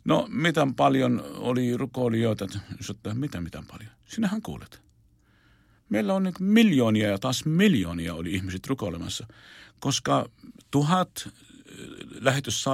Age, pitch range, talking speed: 50-69, 105-130 Hz, 105 wpm